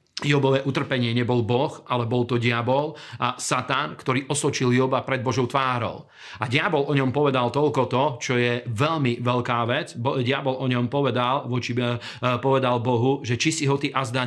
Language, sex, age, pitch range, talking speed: Slovak, male, 40-59, 120-140 Hz, 170 wpm